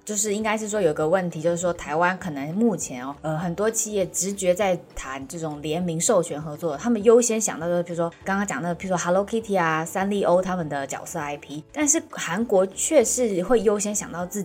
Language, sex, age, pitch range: Chinese, female, 20-39, 165-225 Hz